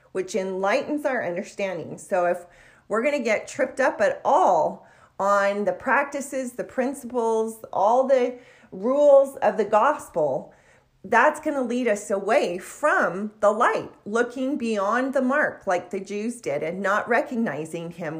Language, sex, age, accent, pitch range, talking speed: English, female, 40-59, American, 180-260 Hz, 145 wpm